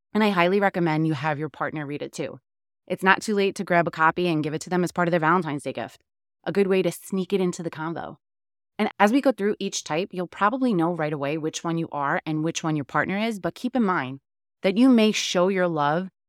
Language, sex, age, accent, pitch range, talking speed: English, female, 20-39, American, 150-190 Hz, 265 wpm